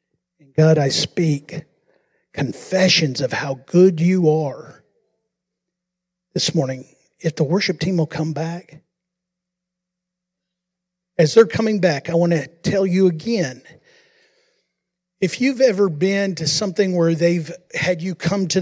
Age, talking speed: 50-69, 130 wpm